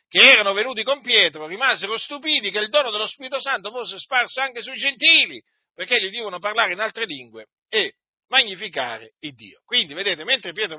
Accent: native